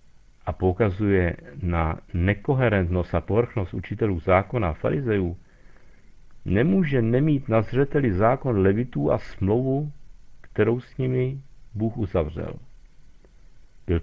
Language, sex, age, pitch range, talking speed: Czech, male, 50-69, 95-125 Hz, 105 wpm